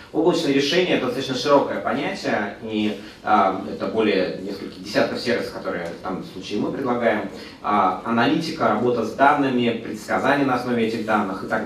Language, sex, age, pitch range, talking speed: Russian, male, 30-49, 100-125 Hz, 165 wpm